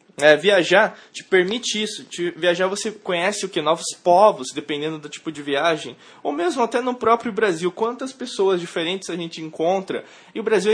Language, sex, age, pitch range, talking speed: Portuguese, male, 20-39, 160-200 Hz, 160 wpm